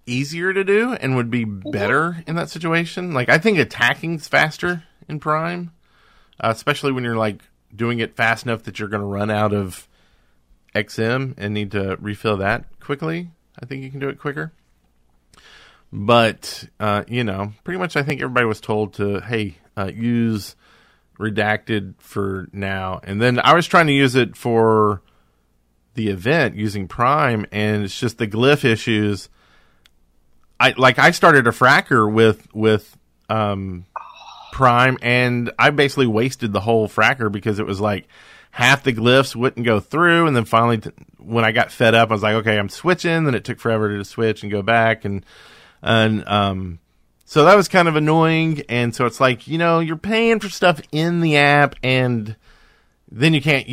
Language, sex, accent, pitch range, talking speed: English, male, American, 105-140 Hz, 180 wpm